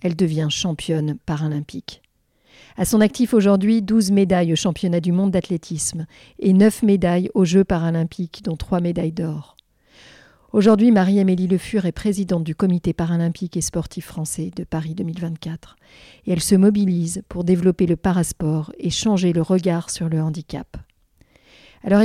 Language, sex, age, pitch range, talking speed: French, female, 40-59, 165-195 Hz, 150 wpm